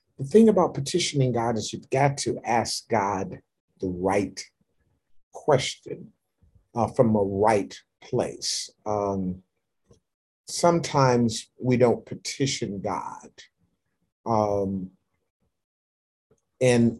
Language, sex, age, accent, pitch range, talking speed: English, male, 40-59, American, 100-125 Hz, 95 wpm